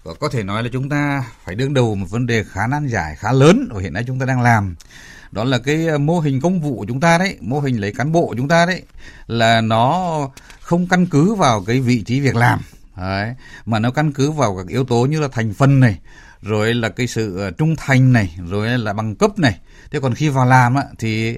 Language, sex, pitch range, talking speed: Vietnamese, male, 115-150 Hz, 245 wpm